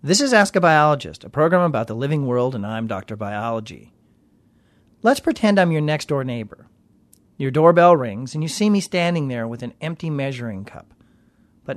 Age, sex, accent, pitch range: 40-59, male, American, 125-185 Hz